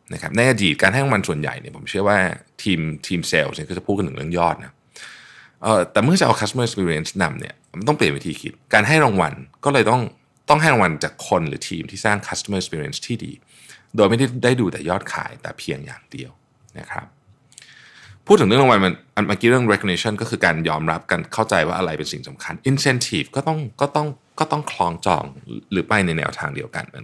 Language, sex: Thai, male